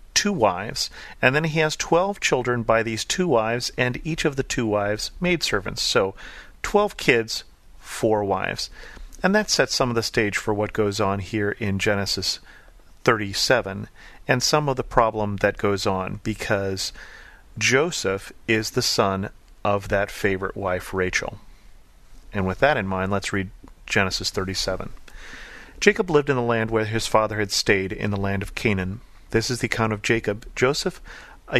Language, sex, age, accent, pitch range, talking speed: English, male, 40-59, American, 100-120 Hz, 170 wpm